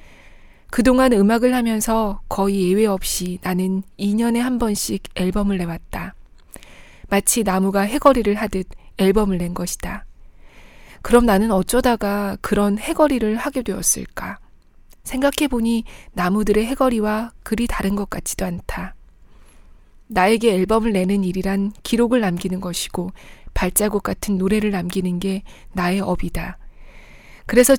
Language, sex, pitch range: Korean, female, 185-225 Hz